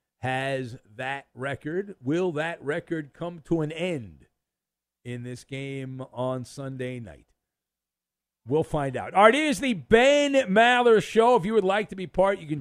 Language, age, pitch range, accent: English, 50-69, 135-205 Hz, American